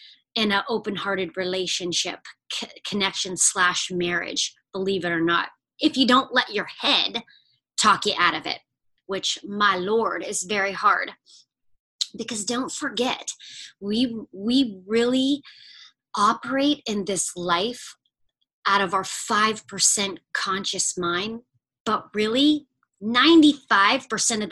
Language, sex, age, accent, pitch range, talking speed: English, female, 30-49, American, 195-245 Hz, 115 wpm